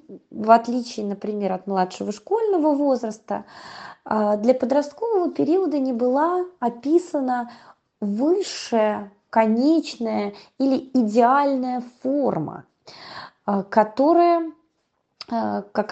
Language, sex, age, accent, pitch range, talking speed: Russian, female, 20-39, native, 200-275 Hz, 75 wpm